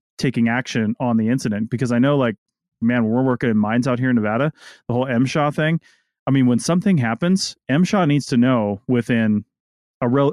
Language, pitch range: English, 110-135 Hz